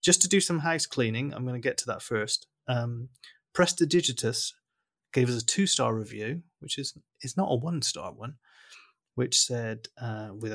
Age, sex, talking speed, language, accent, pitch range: 30-49, male, 180 wpm, English, British, 115-140 Hz